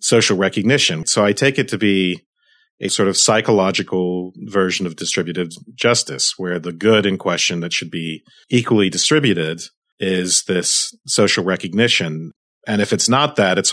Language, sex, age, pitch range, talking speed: English, male, 40-59, 95-120 Hz, 155 wpm